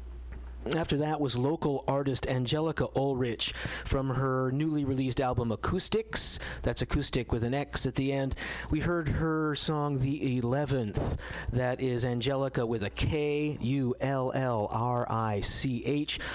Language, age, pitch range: English, 50-69, 115-145 Hz